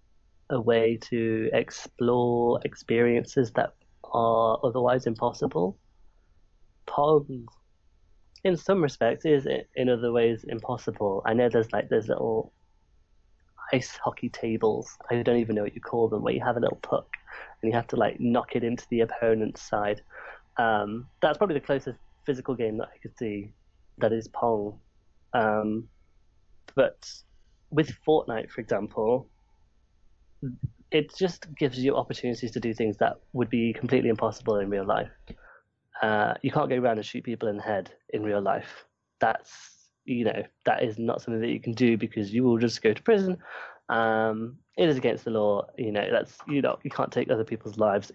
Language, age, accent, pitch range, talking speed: English, 20-39, British, 110-125 Hz, 170 wpm